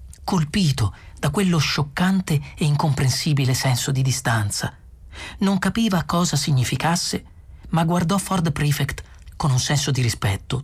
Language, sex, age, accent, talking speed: Italian, male, 40-59, native, 125 wpm